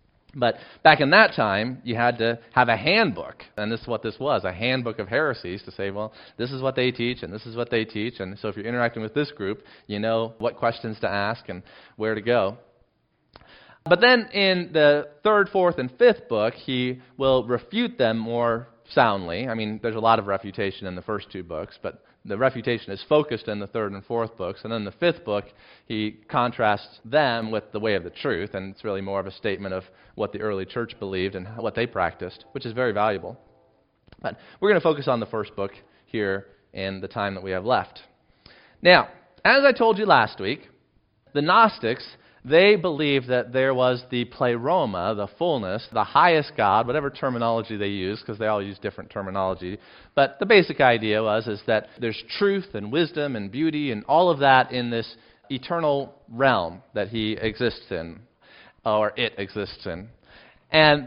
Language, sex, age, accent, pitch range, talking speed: English, male, 30-49, American, 105-135 Hz, 200 wpm